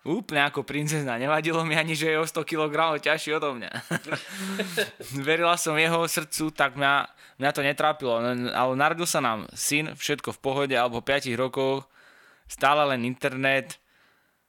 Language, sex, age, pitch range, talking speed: Slovak, male, 20-39, 125-150 Hz, 155 wpm